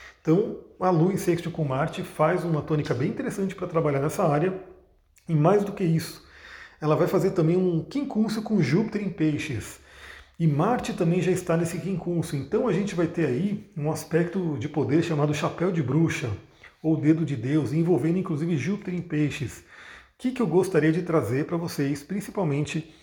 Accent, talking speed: Brazilian, 180 wpm